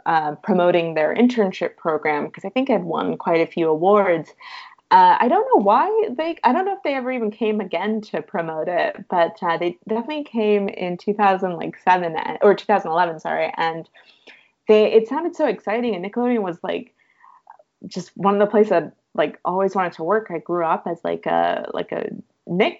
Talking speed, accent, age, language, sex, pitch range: 190 wpm, American, 20-39, English, female, 165-215 Hz